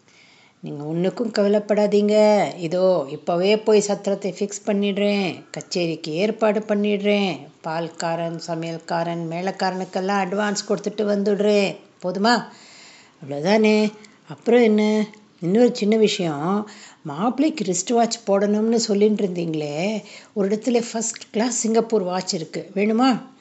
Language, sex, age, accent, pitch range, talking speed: Tamil, female, 60-79, native, 175-215 Hz, 95 wpm